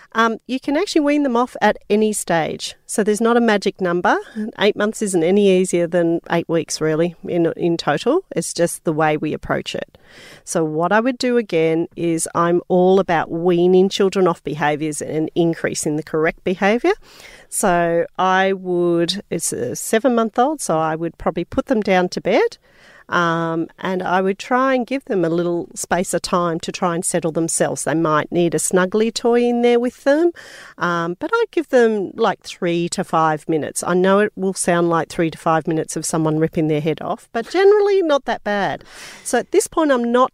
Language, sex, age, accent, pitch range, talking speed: English, female, 40-59, Australian, 165-215 Hz, 200 wpm